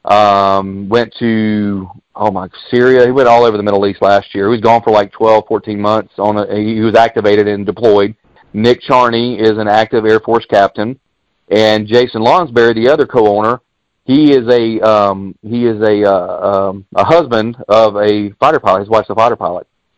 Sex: male